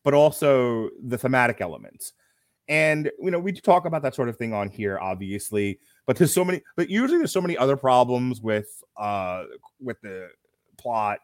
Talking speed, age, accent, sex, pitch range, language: 180 wpm, 30-49, American, male, 110-155 Hz, English